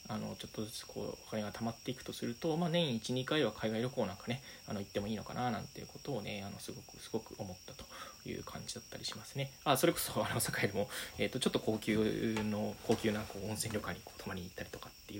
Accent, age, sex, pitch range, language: native, 20-39, male, 105-140 Hz, Japanese